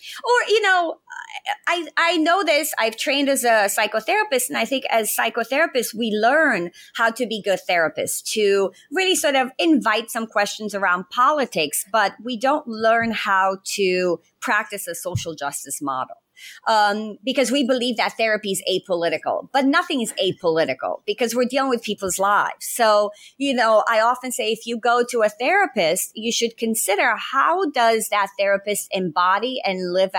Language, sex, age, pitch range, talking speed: English, female, 40-59, 190-255 Hz, 165 wpm